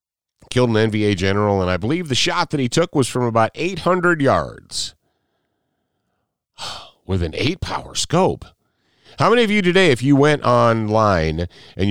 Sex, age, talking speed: male, 40-59, 160 wpm